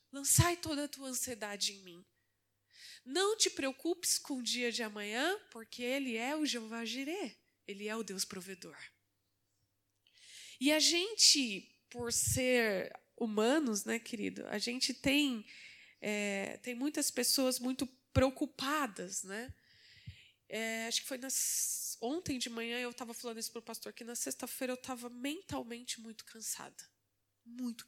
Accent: Brazilian